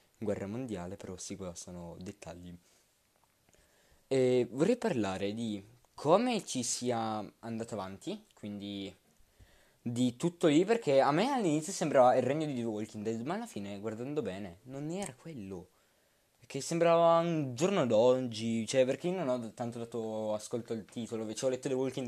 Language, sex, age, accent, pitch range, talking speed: Italian, male, 20-39, native, 110-145 Hz, 160 wpm